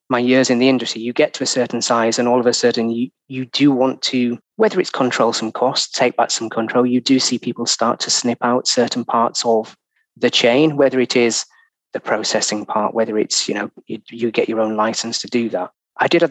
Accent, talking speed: British, 240 wpm